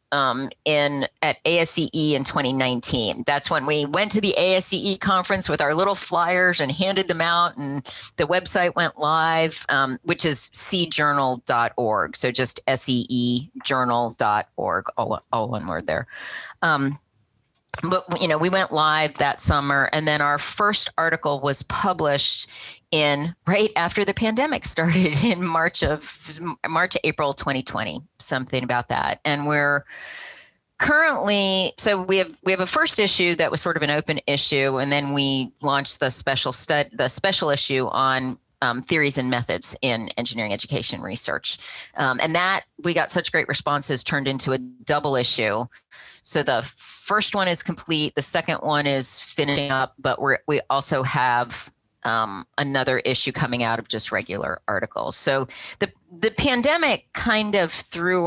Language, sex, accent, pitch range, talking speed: English, female, American, 130-175 Hz, 160 wpm